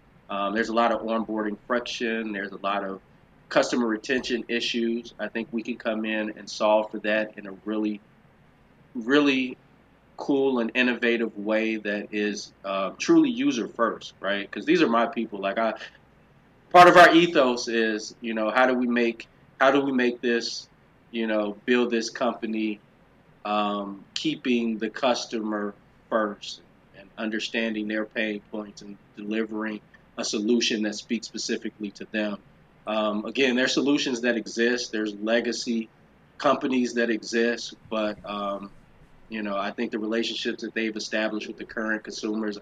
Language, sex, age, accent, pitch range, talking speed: English, male, 30-49, American, 105-120 Hz, 160 wpm